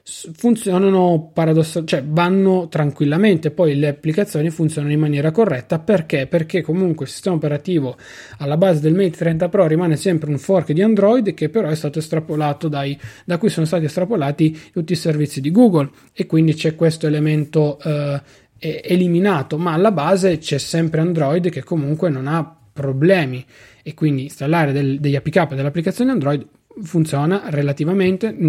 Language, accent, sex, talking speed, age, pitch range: Italian, native, male, 155 wpm, 30-49, 145-180 Hz